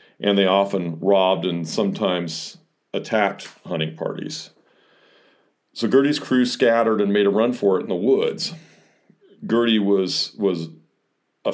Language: English